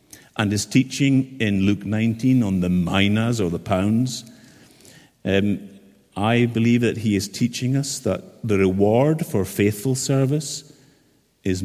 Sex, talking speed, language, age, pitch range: male, 140 wpm, English, 50-69, 100-125 Hz